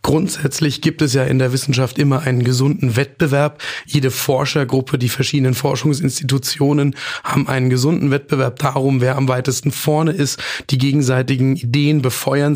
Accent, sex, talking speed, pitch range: German, male, 145 wpm, 135-150 Hz